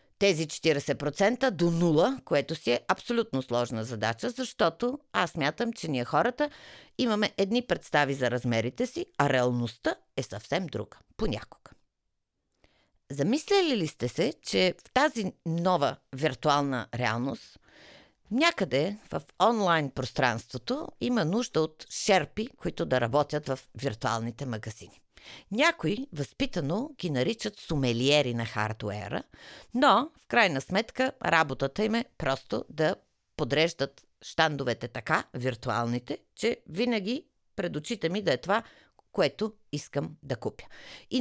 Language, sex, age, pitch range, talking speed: Bulgarian, female, 50-69, 135-210 Hz, 125 wpm